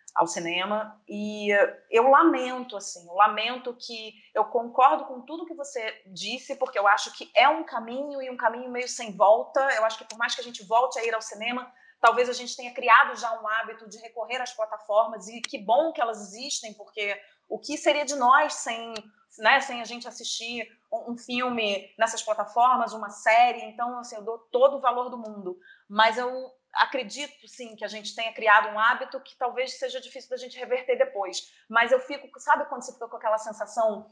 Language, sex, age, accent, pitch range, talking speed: Portuguese, female, 30-49, Brazilian, 210-250 Hz, 205 wpm